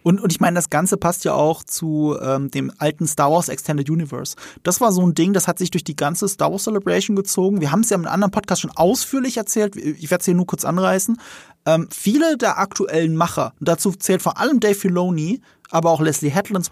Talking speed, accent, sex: 235 wpm, German, male